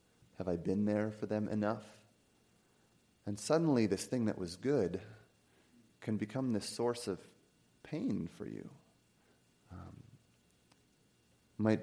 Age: 30-49